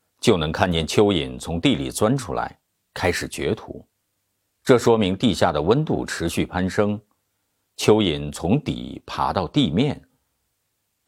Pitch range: 90-110 Hz